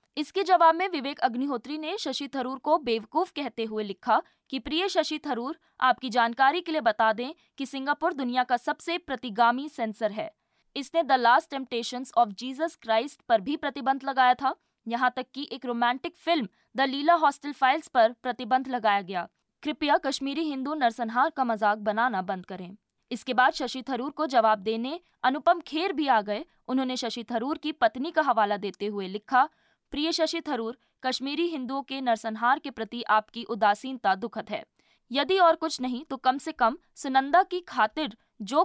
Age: 20-39